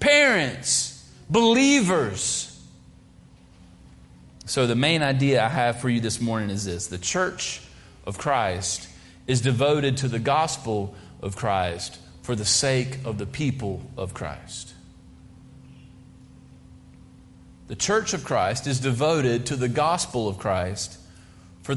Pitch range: 100-155 Hz